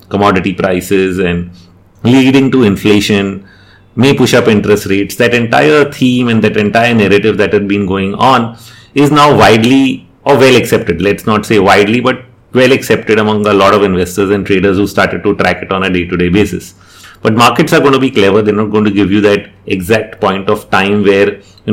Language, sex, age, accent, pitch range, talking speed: English, male, 30-49, Indian, 95-115 Hz, 200 wpm